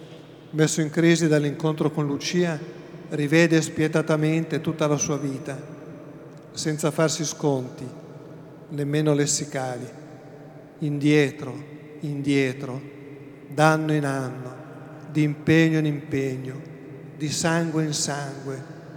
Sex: male